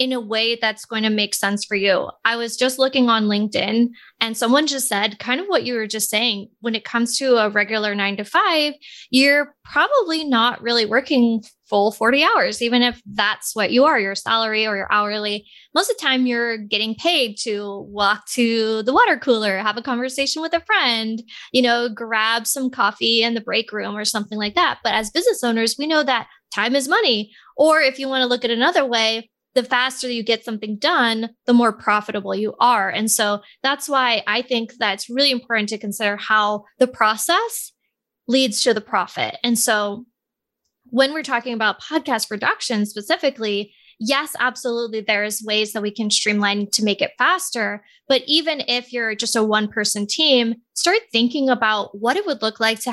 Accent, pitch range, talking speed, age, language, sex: American, 215-255 Hz, 195 wpm, 20-39, English, female